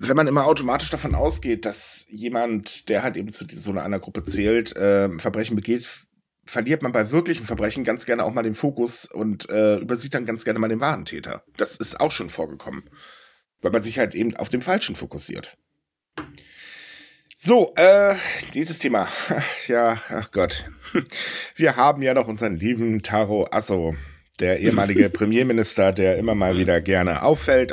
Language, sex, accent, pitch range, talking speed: German, male, German, 110-165 Hz, 170 wpm